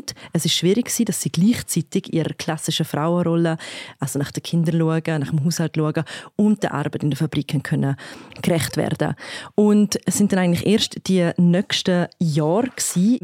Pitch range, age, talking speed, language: 165-195 Hz, 30-49, 165 wpm, German